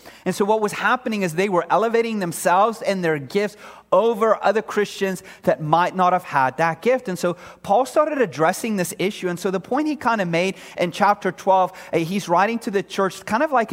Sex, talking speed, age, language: male, 215 wpm, 30-49, English